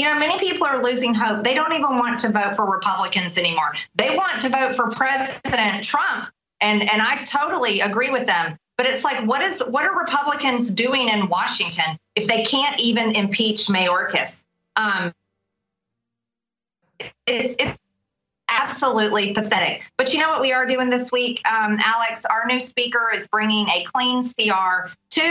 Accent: American